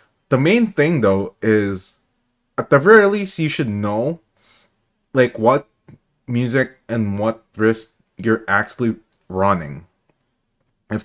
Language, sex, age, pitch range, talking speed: English, male, 20-39, 110-150 Hz, 120 wpm